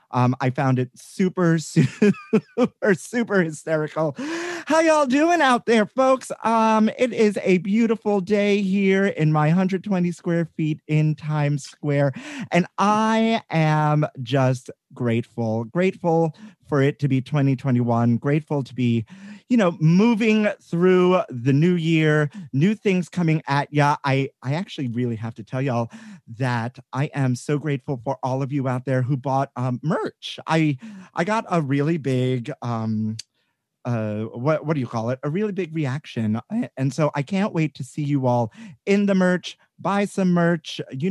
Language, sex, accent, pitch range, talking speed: English, male, American, 130-190 Hz, 165 wpm